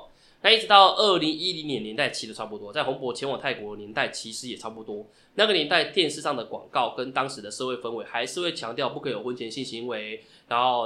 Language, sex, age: Chinese, male, 20-39